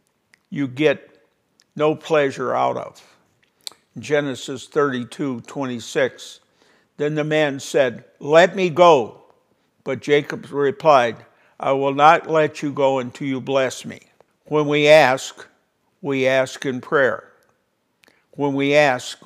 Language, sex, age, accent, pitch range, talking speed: English, male, 60-79, American, 135-150 Hz, 120 wpm